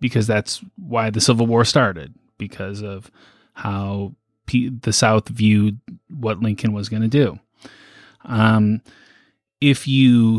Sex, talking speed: male, 120 wpm